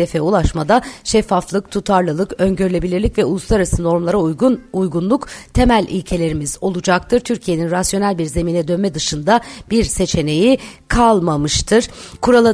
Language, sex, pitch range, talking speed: Turkish, female, 170-215 Hz, 110 wpm